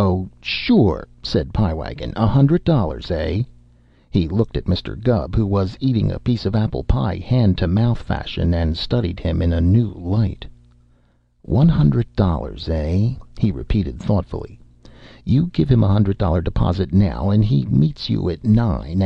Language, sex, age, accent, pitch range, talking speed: English, male, 60-79, American, 80-115 Hz, 155 wpm